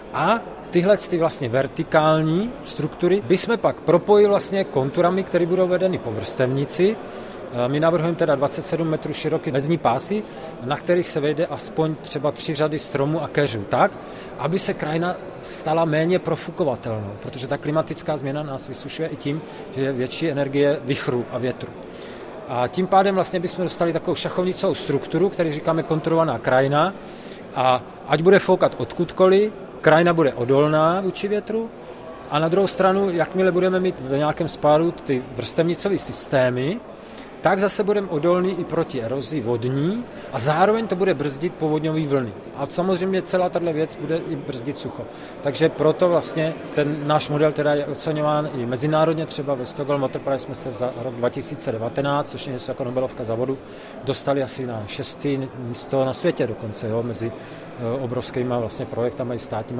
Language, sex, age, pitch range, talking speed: Czech, male, 40-59, 135-175 Hz, 160 wpm